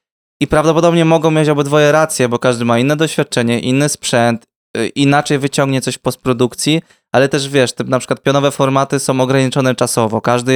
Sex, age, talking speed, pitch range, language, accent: male, 20-39, 165 wpm, 125-150 Hz, Polish, native